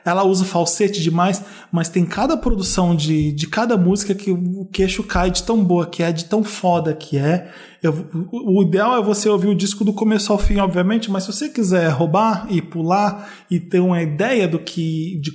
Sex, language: male, Portuguese